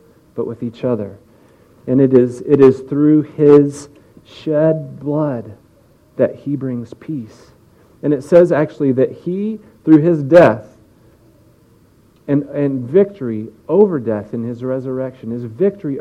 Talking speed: 135 wpm